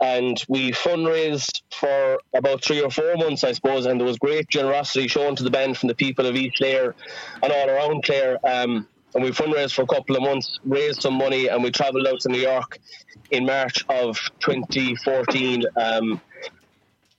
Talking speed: 185 wpm